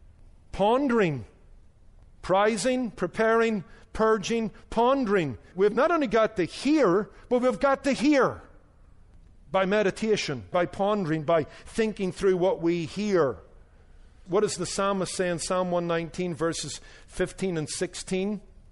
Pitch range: 175-235 Hz